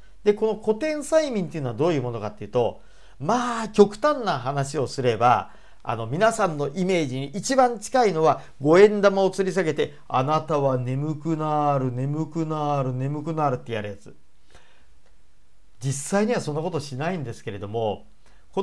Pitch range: 125-200 Hz